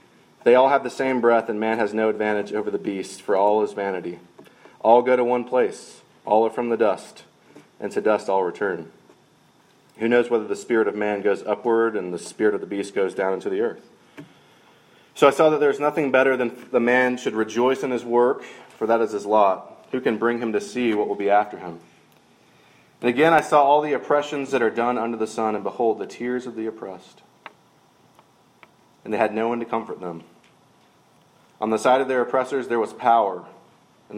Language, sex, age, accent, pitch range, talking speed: English, male, 30-49, American, 105-125 Hz, 215 wpm